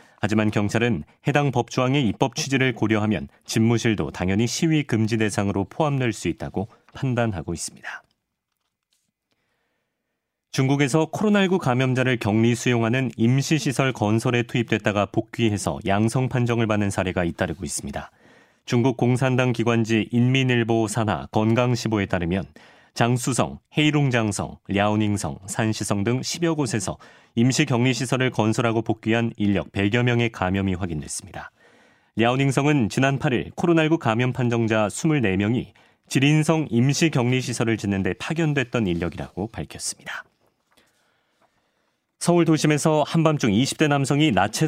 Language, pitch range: Korean, 105-135 Hz